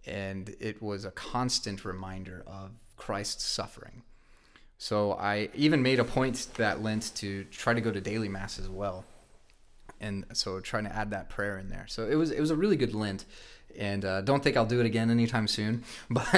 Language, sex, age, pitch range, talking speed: English, male, 30-49, 100-120 Hz, 200 wpm